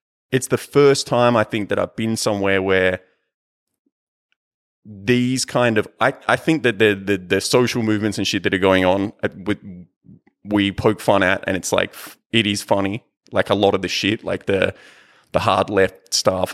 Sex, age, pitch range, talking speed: male, 30-49, 95-115 Hz, 190 wpm